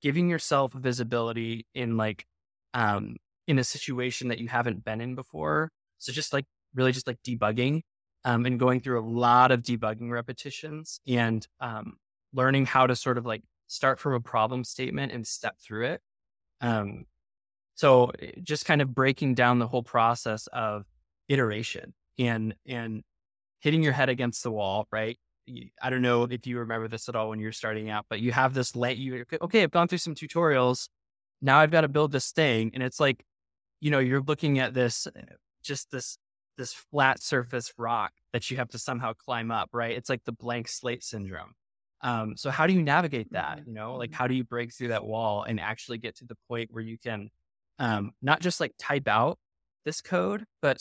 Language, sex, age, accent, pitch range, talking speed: English, male, 20-39, American, 110-135 Hz, 195 wpm